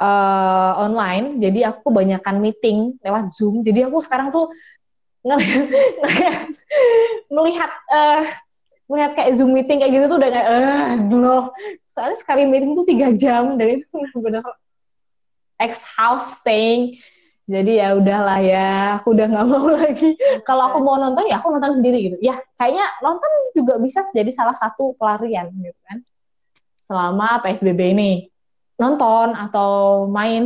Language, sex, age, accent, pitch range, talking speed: Indonesian, female, 20-39, native, 195-265 Hz, 160 wpm